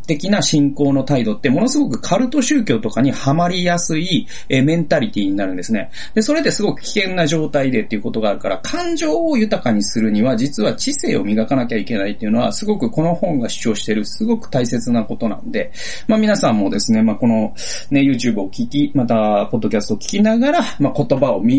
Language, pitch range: Japanese, 115-190 Hz